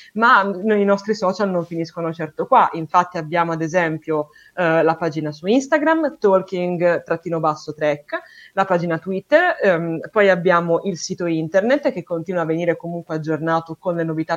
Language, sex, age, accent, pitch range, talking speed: Italian, female, 20-39, native, 165-245 Hz, 155 wpm